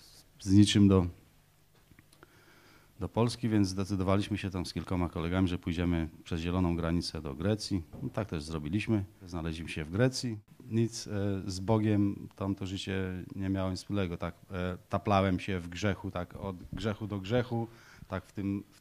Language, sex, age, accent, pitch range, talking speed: Polish, male, 30-49, native, 90-110 Hz, 160 wpm